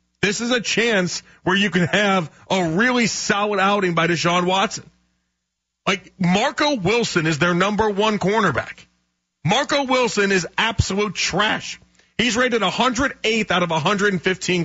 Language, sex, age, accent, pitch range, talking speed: English, male, 30-49, American, 160-205 Hz, 140 wpm